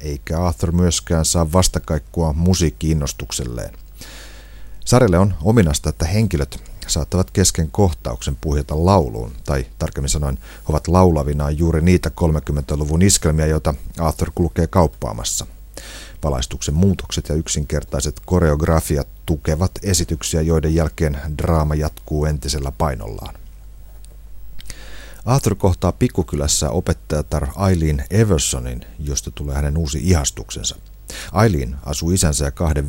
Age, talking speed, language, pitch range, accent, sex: 40-59, 105 wpm, Finnish, 75-90 Hz, native, male